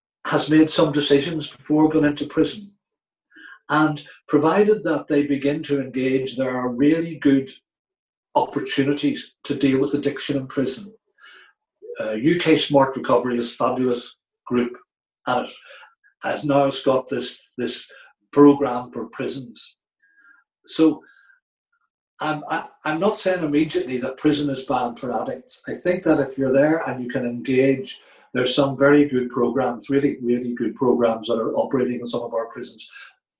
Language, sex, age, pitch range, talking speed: English, male, 60-79, 125-150 Hz, 155 wpm